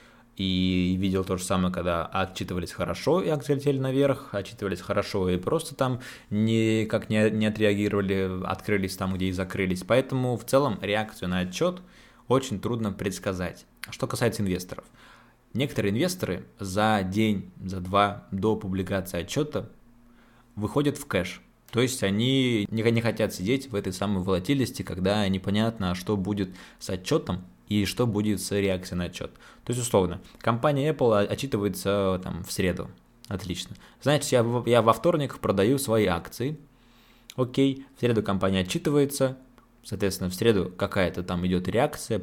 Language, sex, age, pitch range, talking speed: Russian, male, 20-39, 95-125 Hz, 145 wpm